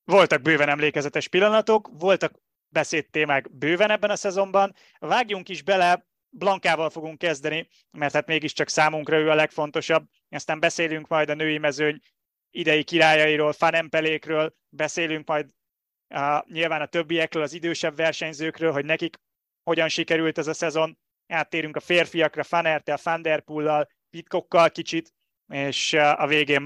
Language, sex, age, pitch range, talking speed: Hungarian, male, 20-39, 150-175 Hz, 130 wpm